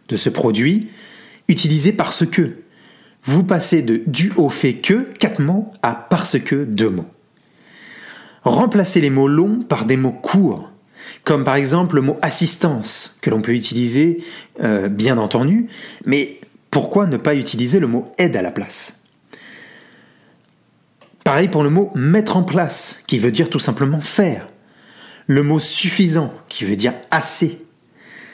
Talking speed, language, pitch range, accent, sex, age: 150 wpm, French, 130-185 Hz, French, male, 30-49